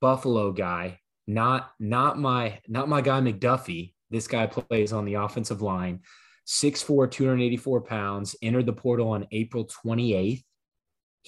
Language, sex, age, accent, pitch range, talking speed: English, male, 20-39, American, 100-125 Hz, 135 wpm